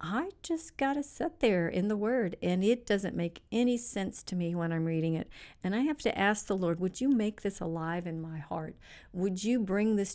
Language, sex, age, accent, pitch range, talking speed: English, female, 50-69, American, 175-230 Hz, 235 wpm